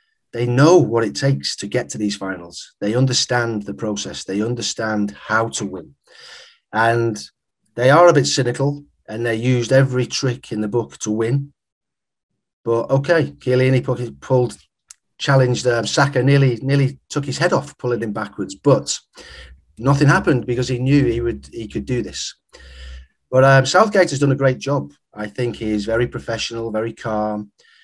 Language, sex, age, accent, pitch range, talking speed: Spanish, male, 30-49, British, 105-135 Hz, 170 wpm